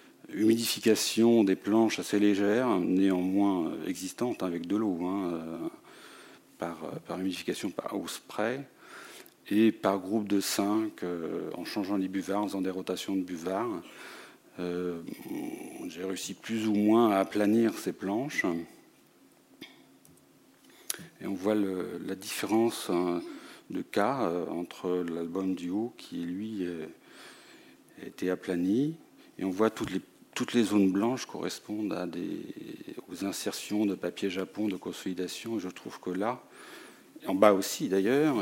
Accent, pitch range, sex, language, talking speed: French, 90-105 Hz, male, French, 135 wpm